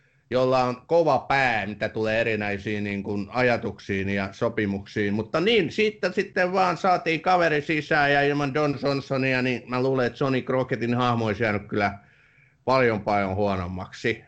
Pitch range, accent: 115-145 Hz, native